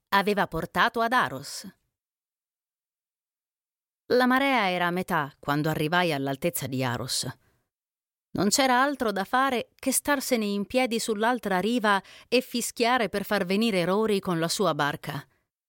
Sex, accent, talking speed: female, native, 135 wpm